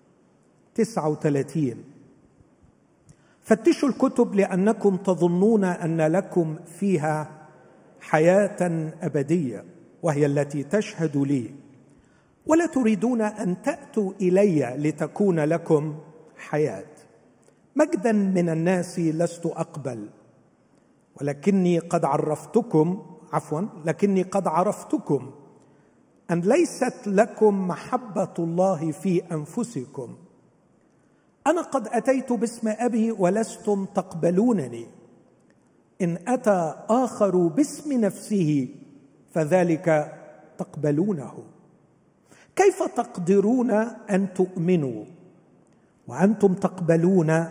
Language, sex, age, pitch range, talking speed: Arabic, male, 50-69, 155-215 Hz, 75 wpm